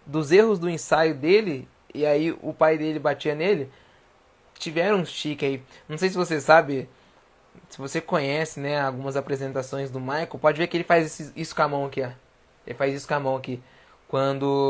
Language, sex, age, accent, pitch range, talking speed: Portuguese, male, 20-39, Brazilian, 140-175 Hz, 195 wpm